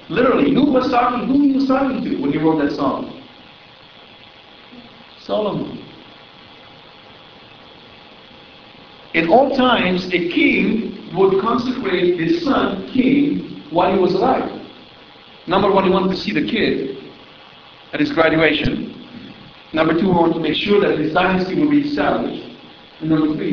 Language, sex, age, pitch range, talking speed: English, male, 50-69, 175-250 Hz, 150 wpm